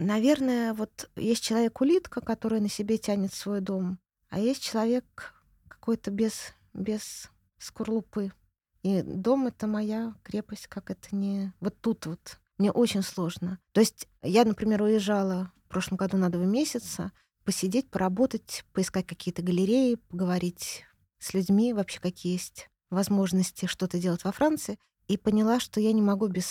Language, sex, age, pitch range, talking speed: Russian, female, 20-39, 180-225 Hz, 150 wpm